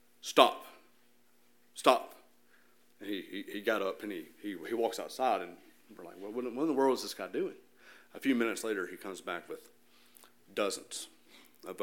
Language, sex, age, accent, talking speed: English, male, 40-59, American, 180 wpm